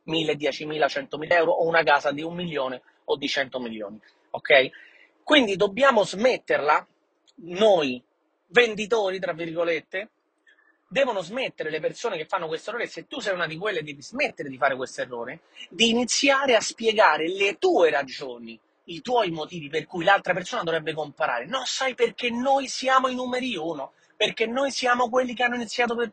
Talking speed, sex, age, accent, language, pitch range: 170 wpm, male, 30-49, native, Italian, 170-250 Hz